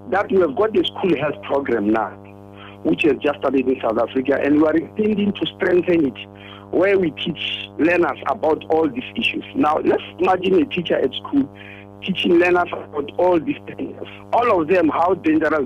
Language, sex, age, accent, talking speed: English, male, 50-69, South African, 190 wpm